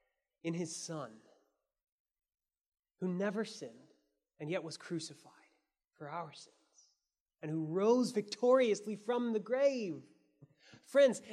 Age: 20-39